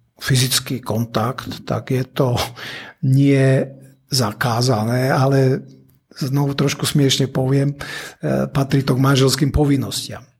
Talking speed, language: 100 wpm, Slovak